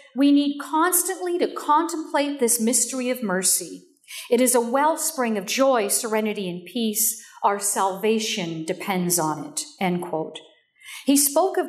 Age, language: 50-69, English